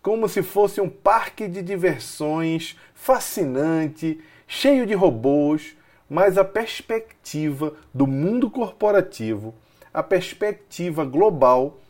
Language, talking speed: Portuguese, 100 wpm